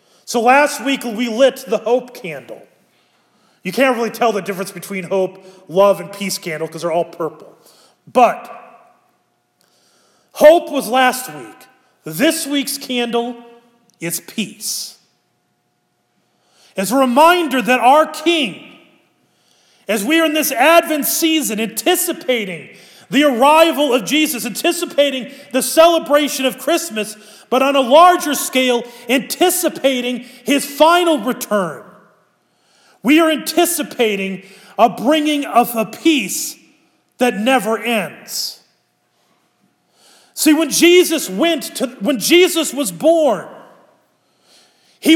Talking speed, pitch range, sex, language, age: 115 wpm, 230-310 Hz, male, English, 40-59